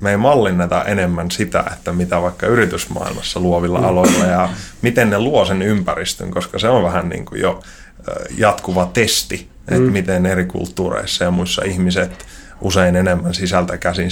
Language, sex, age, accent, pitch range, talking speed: Finnish, male, 20-39, native, 90-100 Hz, 155 wpm